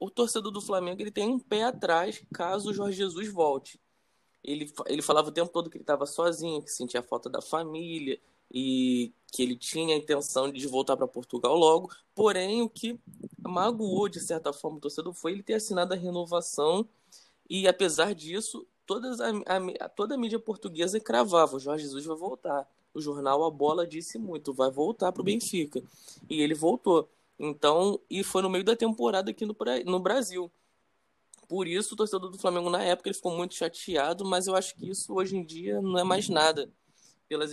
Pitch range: 150-190 Hz